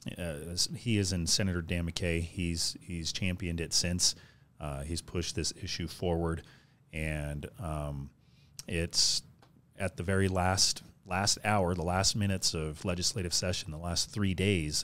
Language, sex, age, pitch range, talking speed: English, male, 30-49, 85-110 Hz, 150 wpm